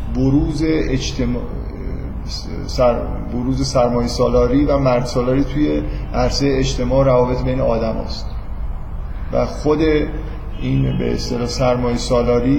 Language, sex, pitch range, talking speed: Persian, male, 120-140 Hz, 100 wpm